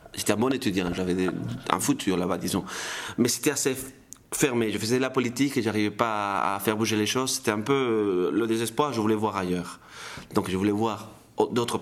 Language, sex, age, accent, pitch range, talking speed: French, male, 30-49, French, 95-125 Hz, 210 wpm